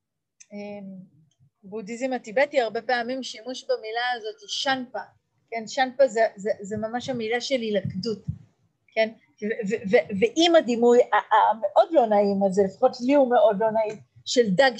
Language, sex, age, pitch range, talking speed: Hebrew, female, 30-49, 215-285 Hz, 145 wpm